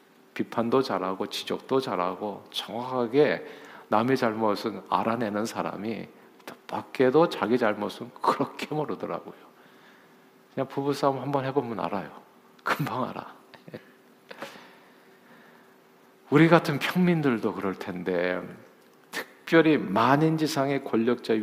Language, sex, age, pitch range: Korean, male, 50-69, 105-135 Hz